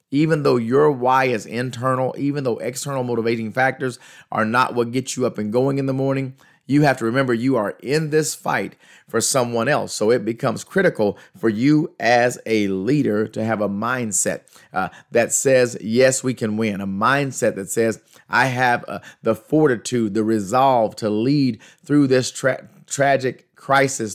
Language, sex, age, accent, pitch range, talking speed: English, male, 30-49, American, 115-145 Hz, 175 wpm